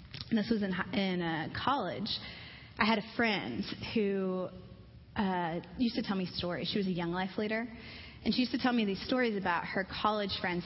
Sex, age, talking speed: female, 20-39, 205 wpm